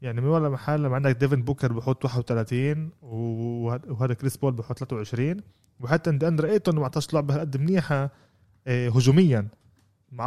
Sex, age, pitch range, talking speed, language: male, 20-39, 110-140 Hz, 150 wpm, Arabic